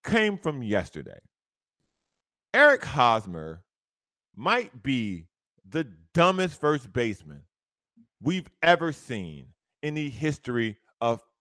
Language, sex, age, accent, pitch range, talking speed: English, male, 40-59, American, 115-195 Hz, 95 wpm